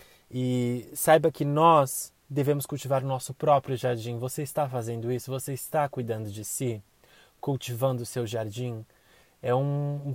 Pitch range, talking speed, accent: 120-145 Hz, 155 wpm, Brazilian